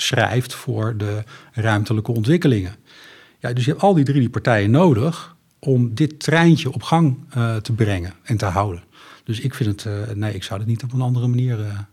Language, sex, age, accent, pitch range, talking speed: Dutch, male, 50-69, Dutch, 110-135 Hz, 205 wpm